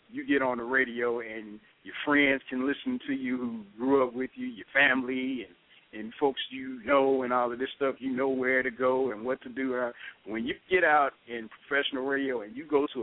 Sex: male